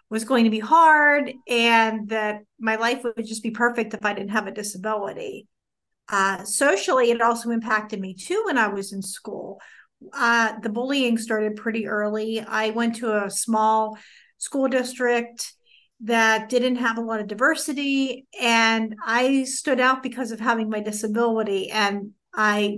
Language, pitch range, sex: English, 215-245 Hz, female